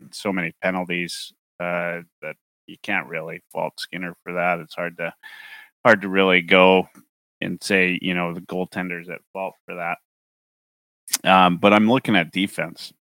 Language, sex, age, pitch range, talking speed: English, male, 30-49, 85-100 Hz, 160 wpm